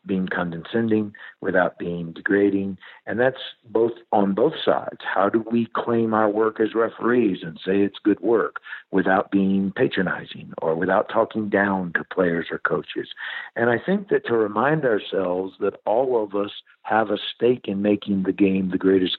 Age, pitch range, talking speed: 60-79, 95-105 Hz, 170 wpm